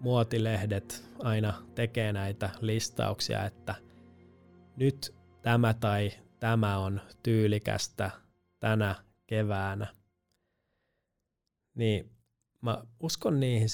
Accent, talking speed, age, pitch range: native, 80 wpm, 20-39, 105-115 Hz